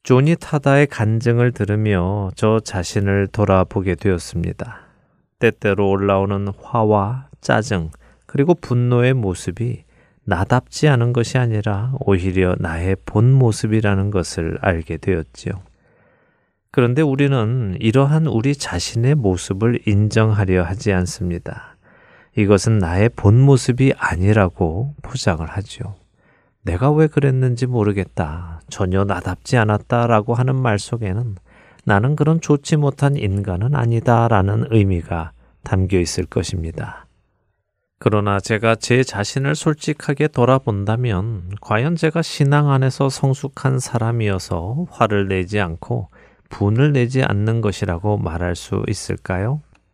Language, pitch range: Korean, 95-130 Hz